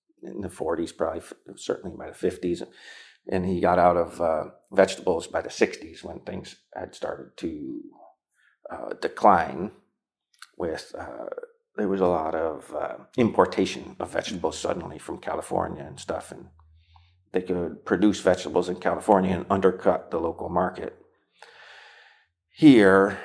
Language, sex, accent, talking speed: English, male, American, 140 wpm